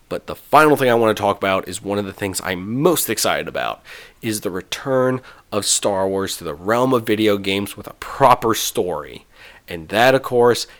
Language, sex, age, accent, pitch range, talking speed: English, male, 30-49, American, 100-135 Hz, 210 wpm